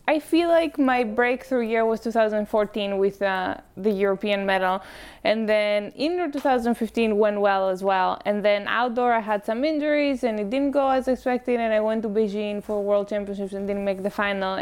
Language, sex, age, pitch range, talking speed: English, female, 20-39, 200-250 Hz, 195 wpm